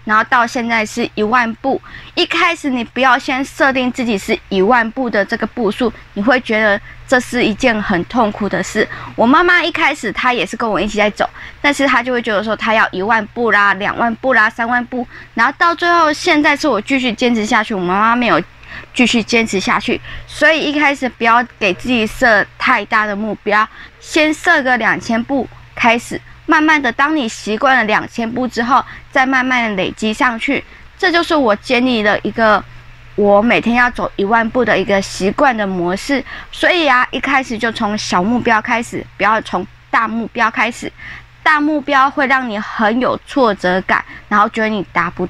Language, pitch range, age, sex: Chinese, 215-275 Hz, 20-39, female